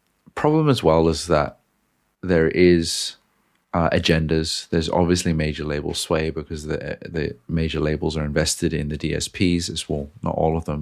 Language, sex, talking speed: English, male, 165 wpm